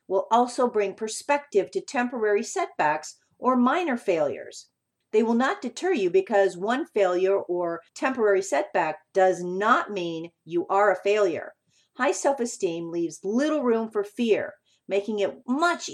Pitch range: 190-260 Hz